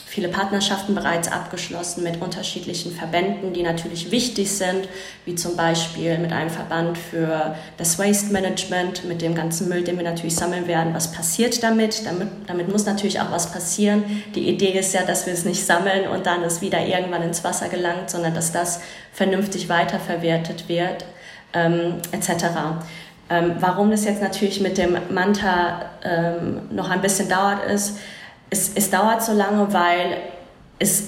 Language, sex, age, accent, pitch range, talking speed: German, female, 30-49, German, 170-195 Hz, 165 wpm